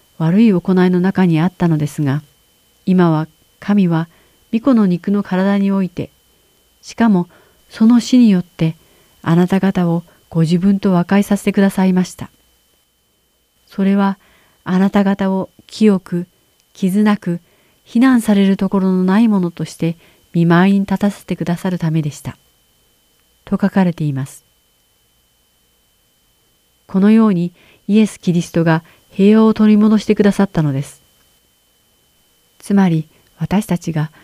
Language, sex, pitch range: Japanese, female, 155-195 Hz